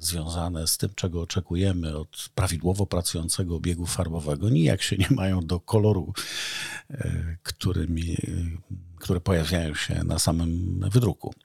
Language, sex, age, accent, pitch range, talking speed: Polish, male, 50-69, native, 85-115 Hz, 115 wpm